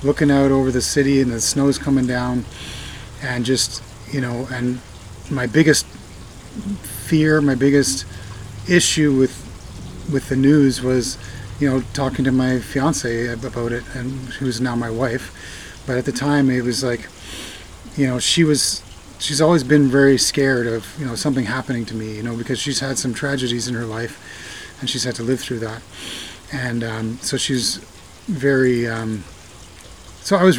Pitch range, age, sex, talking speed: 115-135 Hz, 30-49, male, 175 wpm